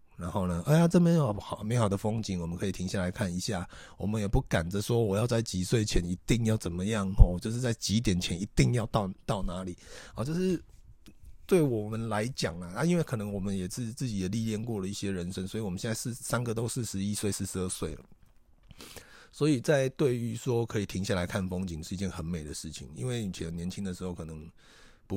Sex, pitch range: male, 90-115 Hz